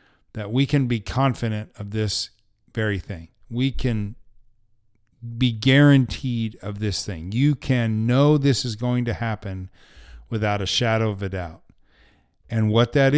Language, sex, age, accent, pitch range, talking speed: English, male, 40-59, American, 100-120 Hz, 150 wpm